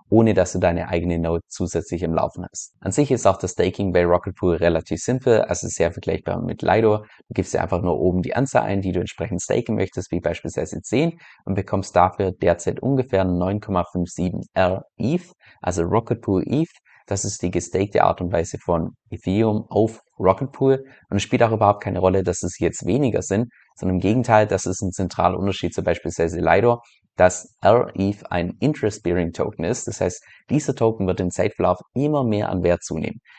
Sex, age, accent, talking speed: male, 20-39, German, 195 wpm